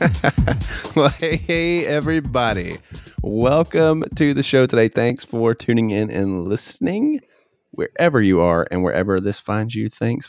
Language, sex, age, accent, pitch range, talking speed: English, male, 30-49, American, 100-135 Hz, 140 wpm